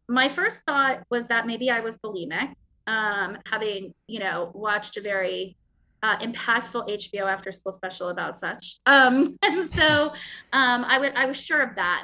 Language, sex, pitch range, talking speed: English, female, 205-270 Hz, 170 wpm